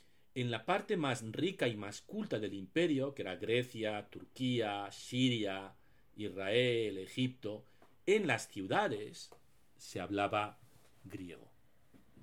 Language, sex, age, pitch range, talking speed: Spanish, male, 40-59, 105-140 Hz, 115 wpm